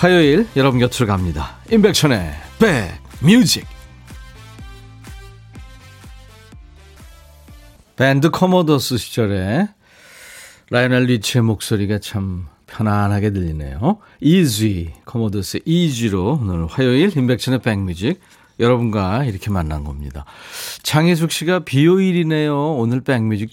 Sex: male